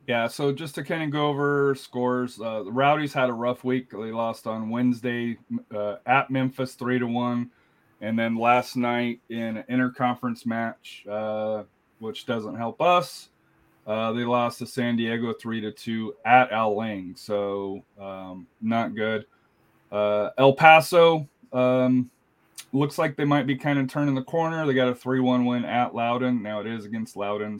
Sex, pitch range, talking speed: male, 110-130 Hz, 180 wpm